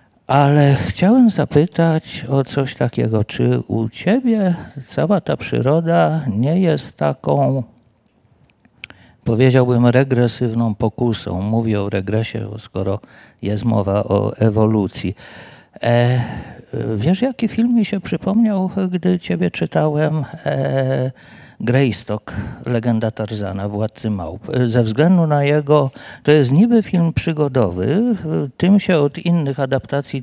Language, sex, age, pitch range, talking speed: Polish, male, 50-69, 115-155 Hz, 105 wpm